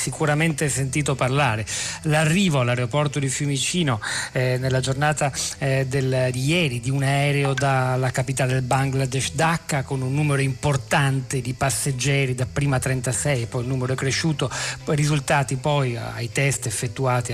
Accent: native